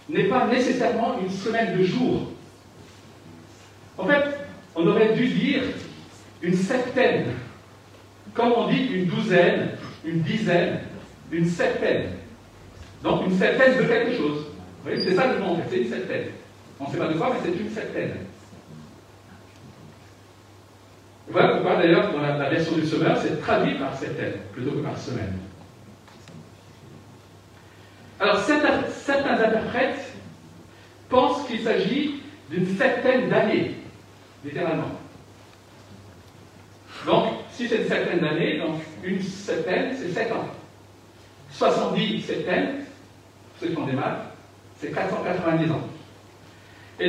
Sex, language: male, French